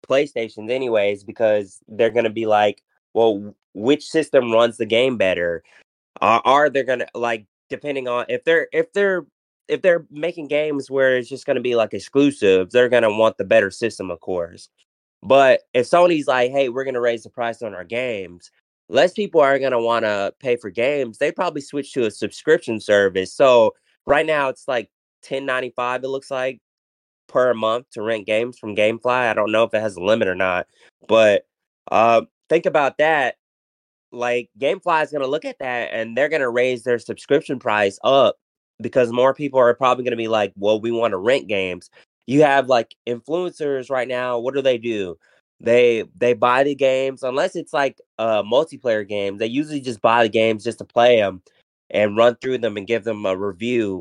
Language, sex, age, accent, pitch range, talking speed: English, male, 20-39, American, 110-135 Hz, 200 wpm